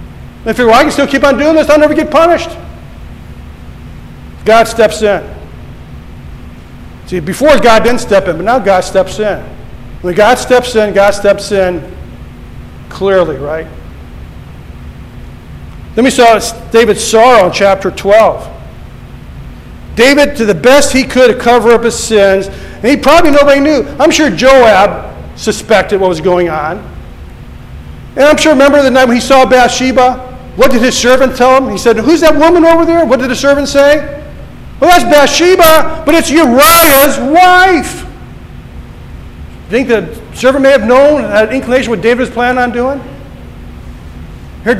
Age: 50-69